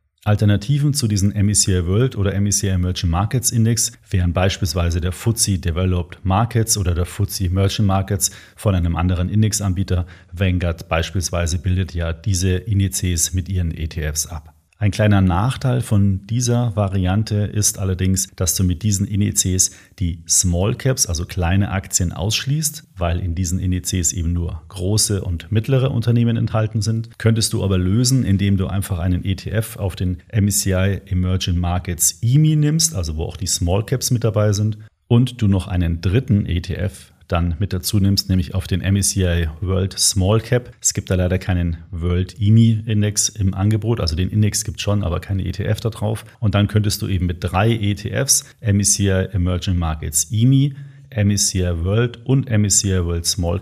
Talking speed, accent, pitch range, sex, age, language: 165 wpm, German, 90-105 Hz, male, 40-59, German